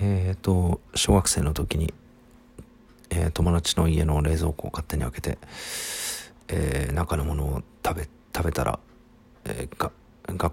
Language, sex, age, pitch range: Japanese, male, 40-59, 75-100 Hz